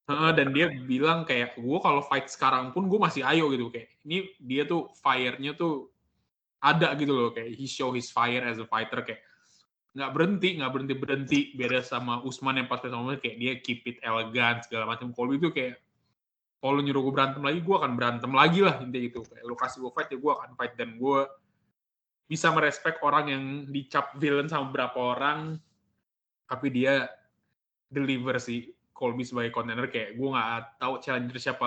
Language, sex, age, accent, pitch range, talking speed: Indonesian, male, 20-39, native, 120-145 Hz, 185 wpm